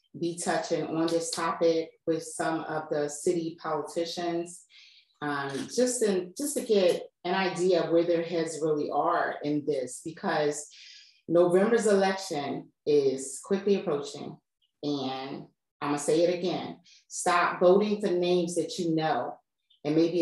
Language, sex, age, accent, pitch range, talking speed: English, female, 30-49, American, 160-190 Hz, 140 wpm